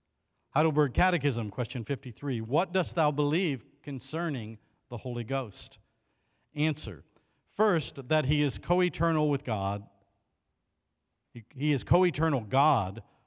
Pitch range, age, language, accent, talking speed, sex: 105-155 Hz, 50-69, English, American, 110 wpm, male